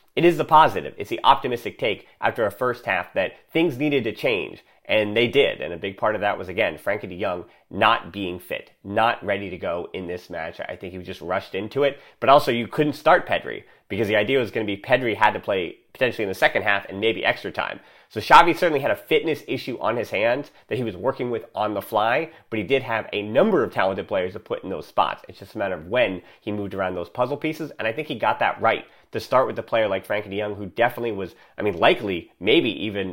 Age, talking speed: 30-49, 255 wpm